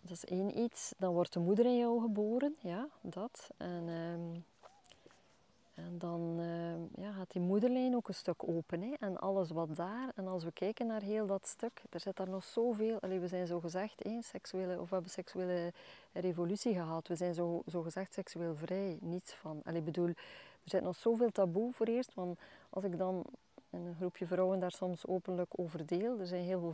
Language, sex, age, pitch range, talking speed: English, female, 20-39, 175-205 Hz, 205 wpm